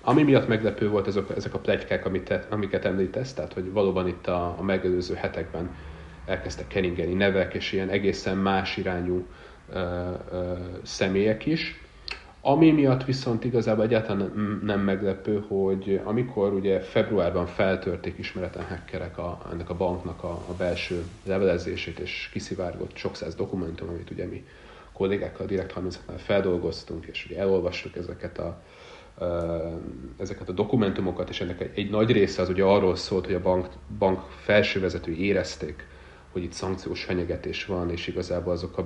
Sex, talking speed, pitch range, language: male, 145 wpm, 85-95 Hz, Hungarian